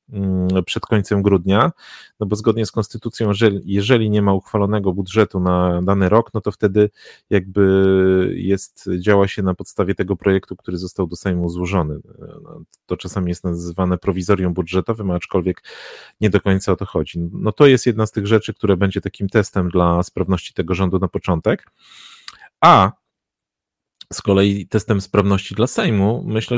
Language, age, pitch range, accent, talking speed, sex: Polish, 30-49, 90-105 Hz, native, 160 wpm, male